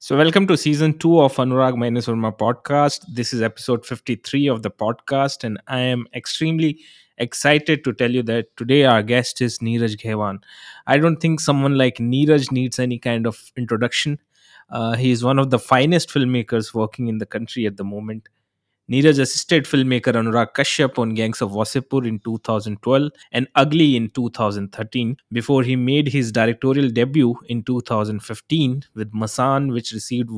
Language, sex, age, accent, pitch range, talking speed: Hindi, male, 20-39, native, 115-140 Hz, 170 wpm